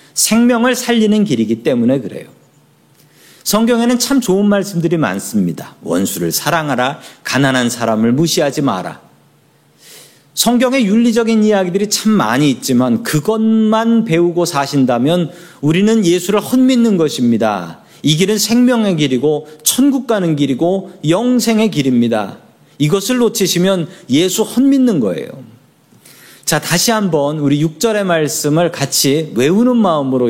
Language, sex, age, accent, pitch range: Korean, male, 40-59, native, 140-210 Hz